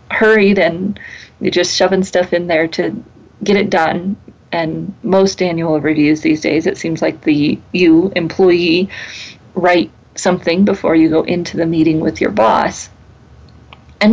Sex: female